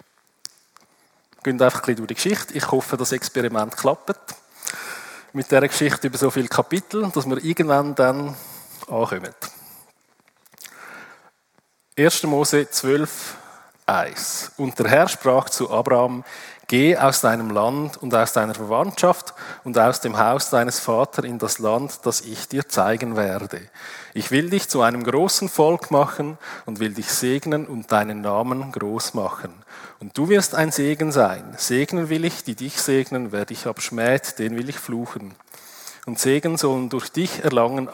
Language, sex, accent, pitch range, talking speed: German, male, Austrian, 120-155 Hz, 155 wpm